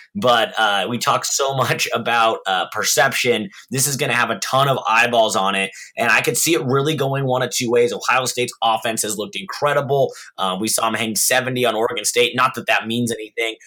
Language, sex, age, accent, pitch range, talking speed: English, male, 20-39, American, 115-140 Hz, 225 wpm